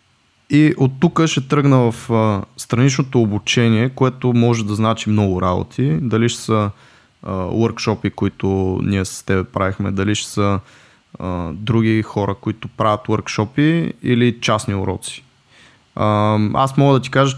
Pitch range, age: 105-130 Hz, 20-39